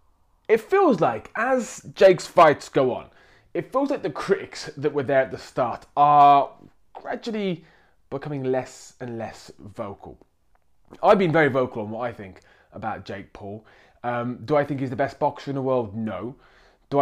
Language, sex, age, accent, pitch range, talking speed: English, male, 20-39, British, 115-165 Hz, 175 wpm